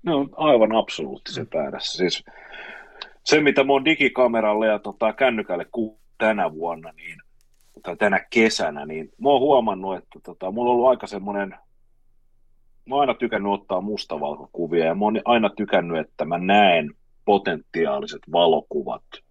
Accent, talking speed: native, 145 wpm